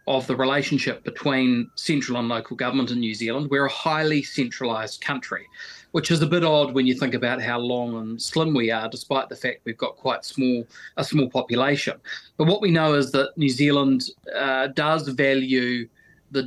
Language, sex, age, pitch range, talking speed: English, male, 30-49, 125-145 Hz, 195 wpm